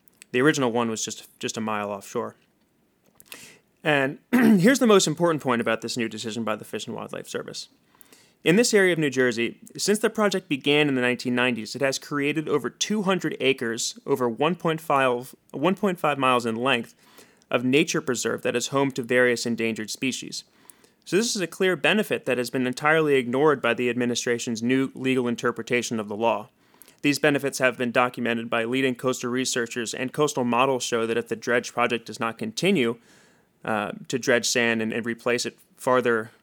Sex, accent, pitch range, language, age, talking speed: male, American, 120-150 Hz, English, 30-49, 180 wpm